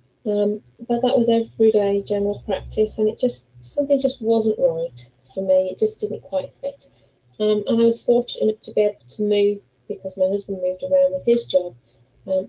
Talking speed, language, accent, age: 190 wpm, English, British, 30-49